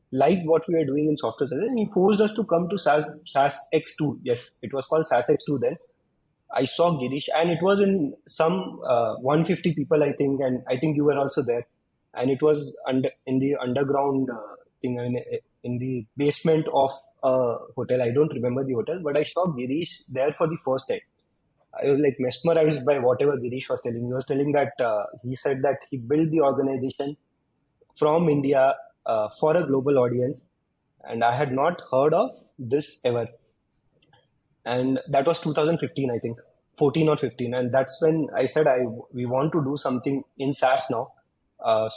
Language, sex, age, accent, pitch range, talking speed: English, male, 20-39, Indian, 130-165 Hz, 195 wpm